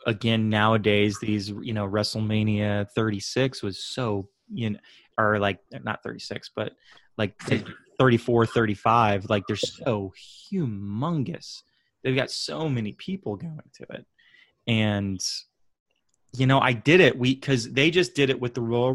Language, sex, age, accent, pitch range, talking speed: English, male, 20-39, American, 110-145 Hz, 145 wpm